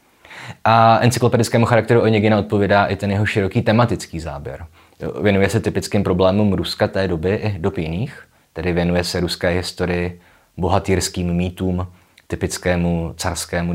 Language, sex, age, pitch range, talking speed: Czech, male, 20-39, 85-105 Hz, 125 wpm